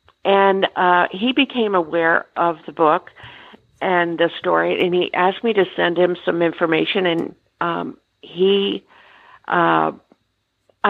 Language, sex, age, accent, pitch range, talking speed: English, female, 50-69, American, 170-205 Hz, 130 wpm